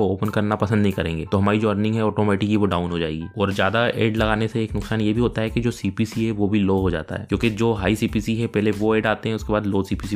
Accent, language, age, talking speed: native, Hindi, 20-39, 295 wpm